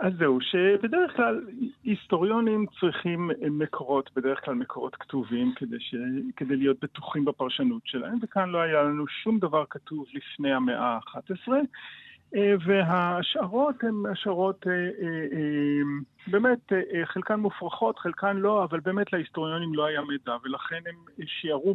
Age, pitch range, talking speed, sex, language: 40-59, 140-205 Hz, 125 wpm, male, Hebrew